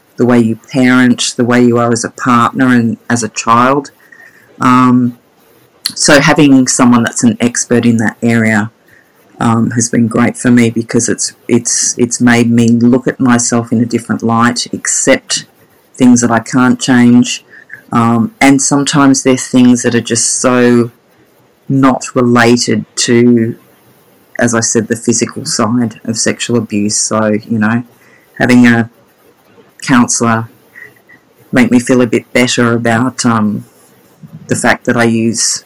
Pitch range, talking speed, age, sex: 115-125 Hz, 150 wpm, 40-59, female